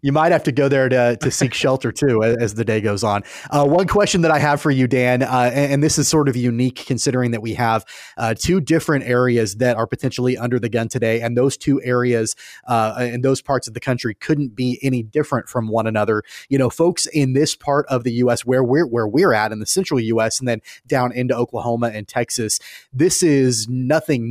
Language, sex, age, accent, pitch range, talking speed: English, male, 30-49, American, 115-140 Hz, 230 wpm